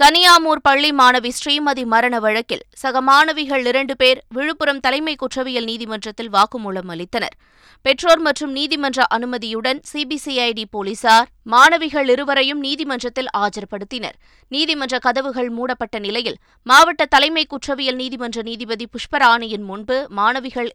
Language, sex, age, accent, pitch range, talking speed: Tamil, female, 20-39, native, 230-280 Hz, 110 wpm